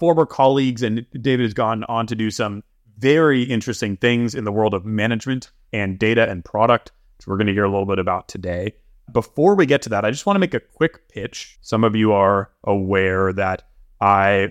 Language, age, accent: English, 30-49, American